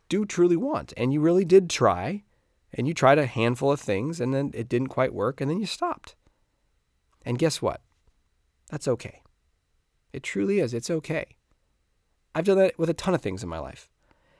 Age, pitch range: 20-39, 95-140 Hz